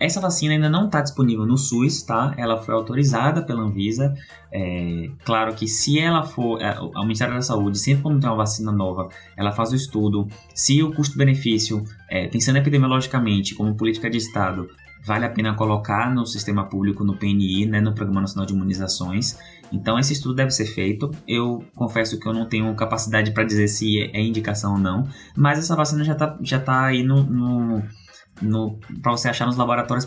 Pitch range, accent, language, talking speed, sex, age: 105-135 Hz, Brazilian, Portuguese, 190 wpm, male, 20-39